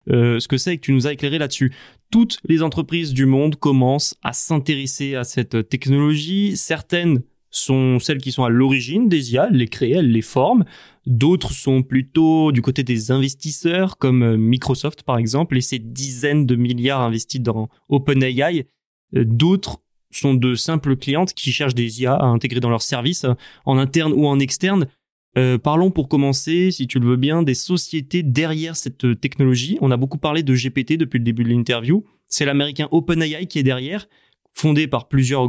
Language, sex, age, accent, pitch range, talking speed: French, male, 20-39, French, 130-165 Hz, 185 wpm